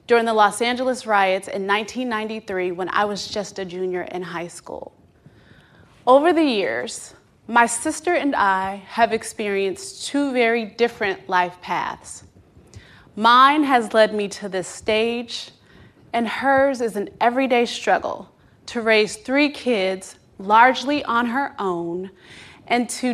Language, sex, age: English, female, 20-39